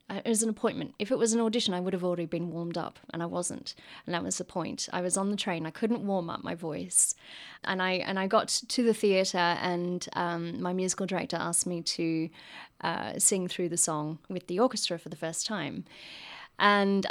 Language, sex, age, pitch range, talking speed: English, female, 30-49, 175-220 Hz, 225 wpm